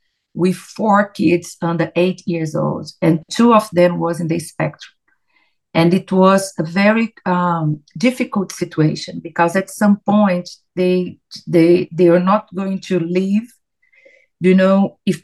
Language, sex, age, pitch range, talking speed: English, female, 40-59, 170-200 Hz, 150 wpm